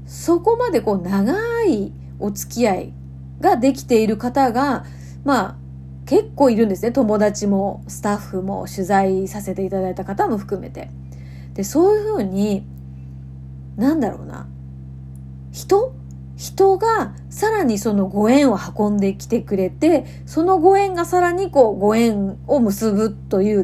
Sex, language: female, Japanese